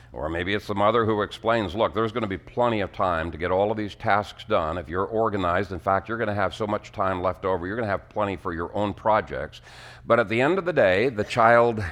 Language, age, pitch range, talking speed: English, 60-79, 100-125 Hz, 255 wpm